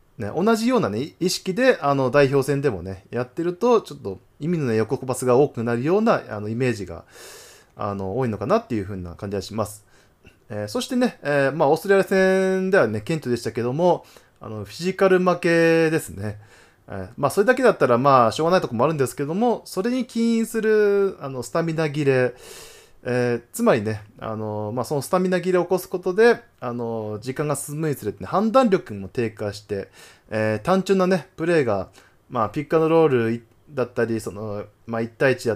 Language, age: Japanese, 20-39